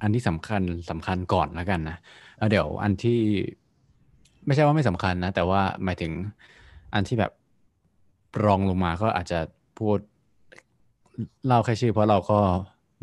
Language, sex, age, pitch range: Thai, male, 20-39, 90-110 Hz